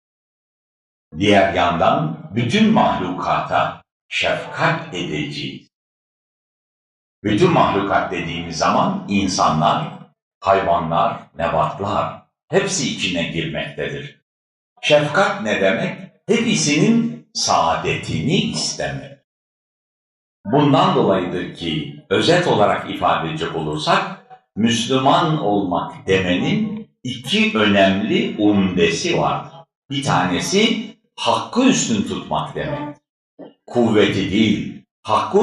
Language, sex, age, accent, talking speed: Turkish, male, 60-79, native, 80 wpm